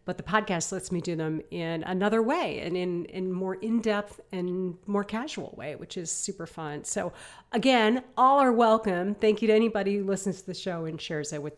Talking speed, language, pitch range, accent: 215 wpm, English, 175-225 Hz, American